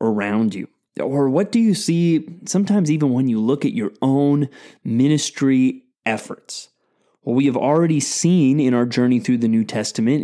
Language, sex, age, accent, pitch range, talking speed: English, male, 30-49, American, 125-175 Hz, 170 wpm